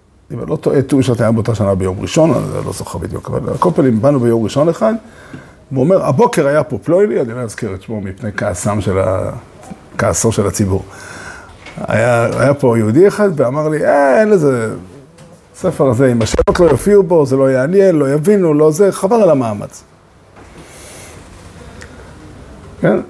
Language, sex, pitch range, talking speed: Hebrew, male, 115-190 Hz, 180 wpm